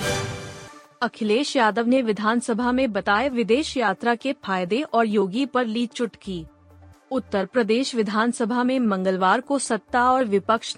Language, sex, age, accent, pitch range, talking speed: Hindi, female, 30-49, native, 210-250 Hz, 135 wpm